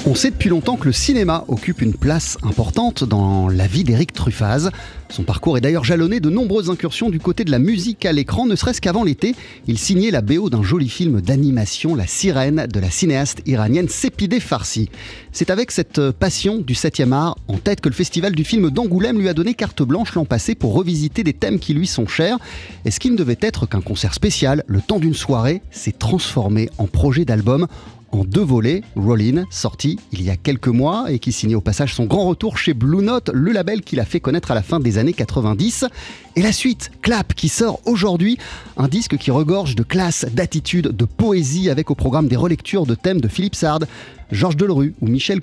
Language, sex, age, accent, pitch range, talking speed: French, male, 30-49, French, 120-185 Hz, 215 wpm